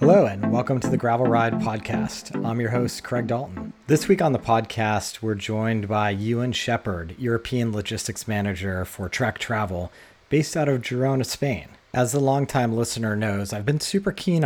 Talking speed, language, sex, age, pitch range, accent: 180 wpm, English, male, 30-49, 105-130 Hz, American